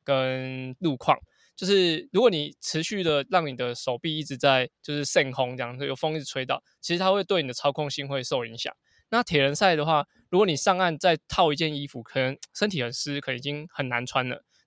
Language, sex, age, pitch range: Chinese, male, 20-39, 135-165 Hz